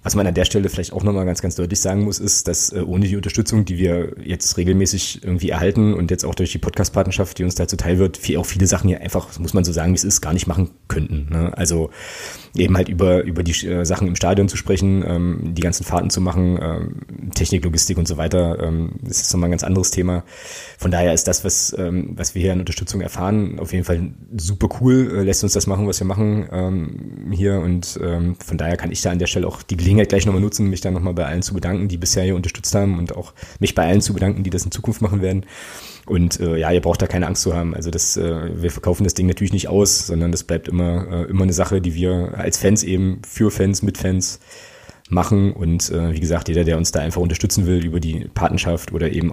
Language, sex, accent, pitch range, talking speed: German, male, German, 85-100 Hz, 255 wpm